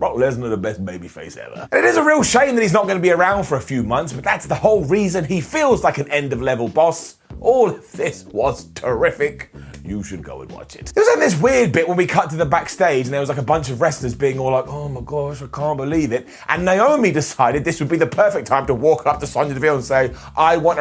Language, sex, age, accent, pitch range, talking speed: English, male, 30-49, British, 140-210 Hz, 270 wpm